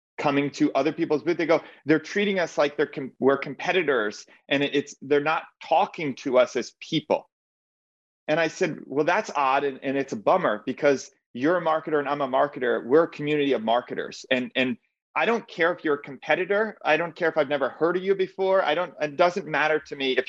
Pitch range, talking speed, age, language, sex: 130-165 Hz, 220 wpm, 30-49, English, male